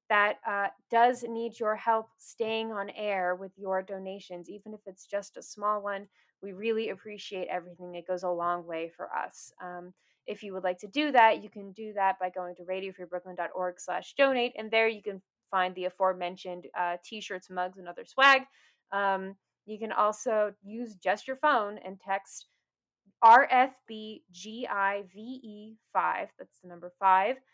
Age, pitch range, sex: 20-39, 185-225 Hz, female